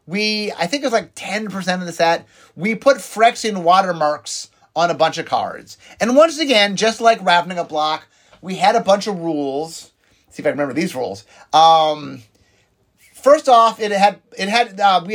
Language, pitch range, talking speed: English, 155-215 Hz, 200 wpm